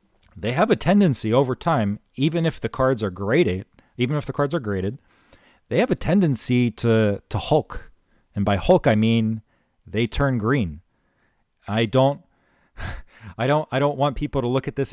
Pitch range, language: 105-130 Hz, English